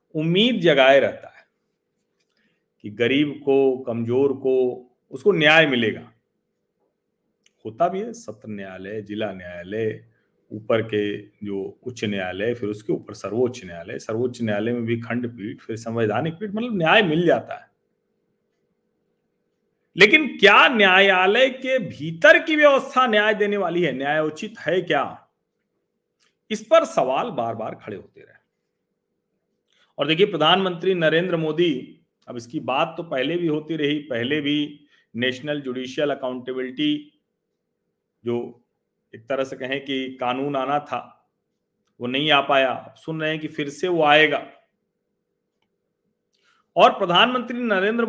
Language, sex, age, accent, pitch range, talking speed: Hindi, male, 40-59, native, 125-205 Hz, 130 wpm